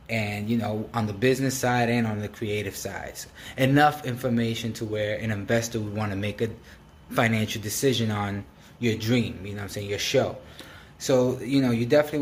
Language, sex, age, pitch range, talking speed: English, male, 20-39, 105-120 Hz, 200 wpm